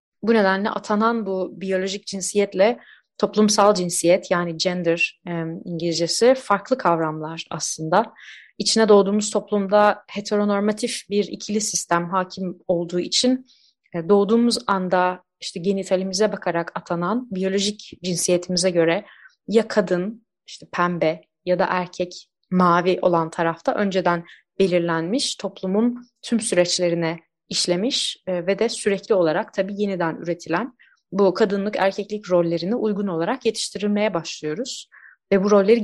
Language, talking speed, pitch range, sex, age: Turkish, 115 wpm, 175-215 Hz, female, 30-49